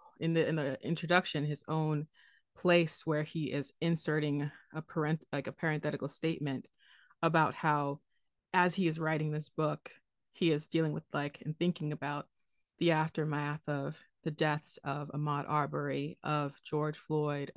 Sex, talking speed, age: female, 155 wpm, 20-39